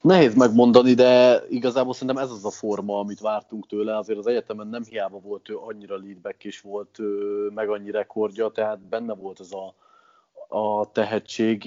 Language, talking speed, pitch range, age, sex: Hungarian, 170 wpm, 105-120 Hz, 30-49, male